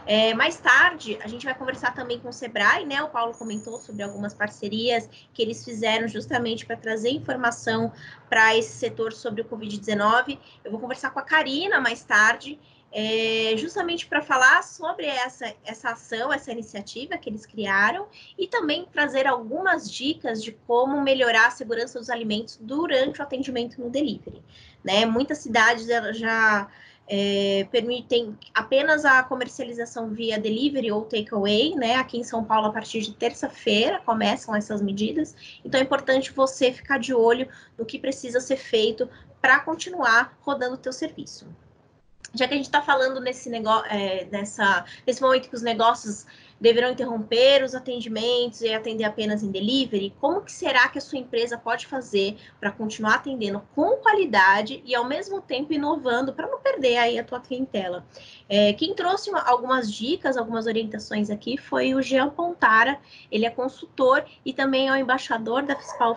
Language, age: Portuguese, 20-39